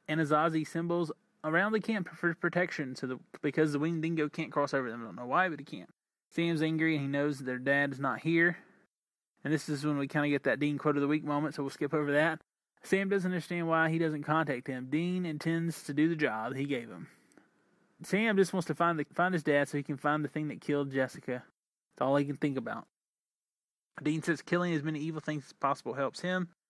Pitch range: 145-170 Hz